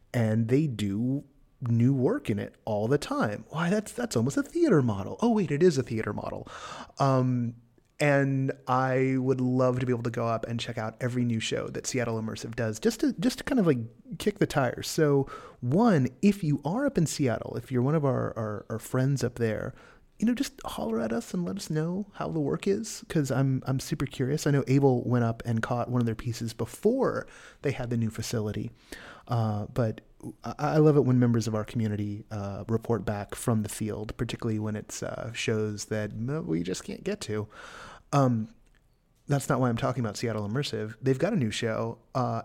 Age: 30-49